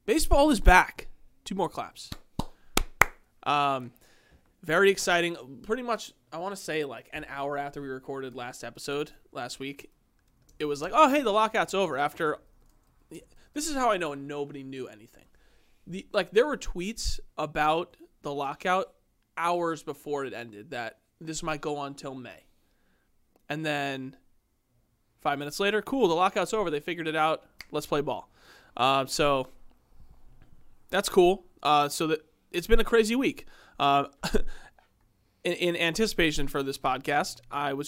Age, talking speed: 20-39, 155 wpm